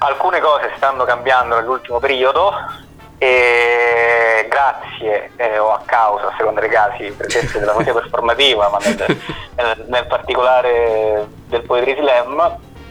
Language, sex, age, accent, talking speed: Italian, male, 30-49, native, 130 wpm